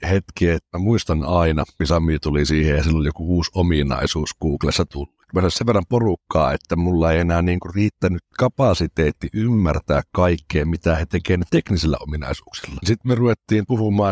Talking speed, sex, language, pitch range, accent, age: 165 wpm, male, Finnish, 85-110 Hz, native, 60-79